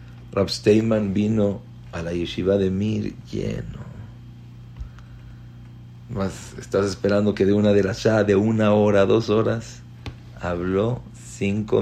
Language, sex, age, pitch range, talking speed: English, male, 50-69, 95-120 Hz, 120 wpm